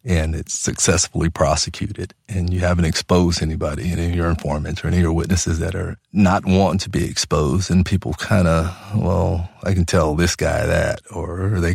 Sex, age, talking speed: male, 40-59, 195 wpm